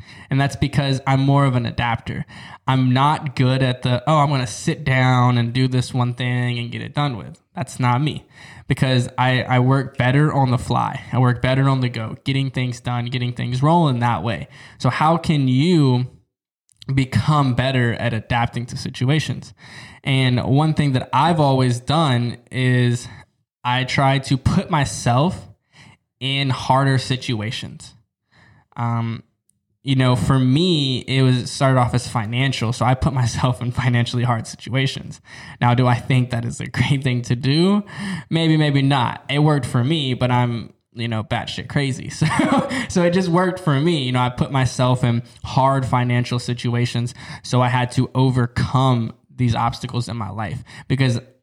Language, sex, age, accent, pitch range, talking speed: English, male, 10-29, American, 120-140 Hz, 175 wpm